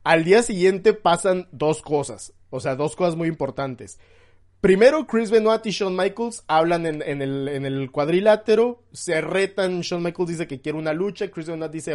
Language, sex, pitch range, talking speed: Spanish, male, 145-190 Hz, 175 wpm